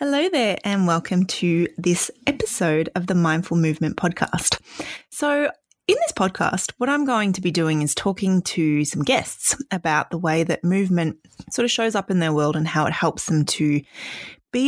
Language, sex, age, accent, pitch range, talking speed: English, female, 20-39, Australian, 155-225 Hz, 190 wpm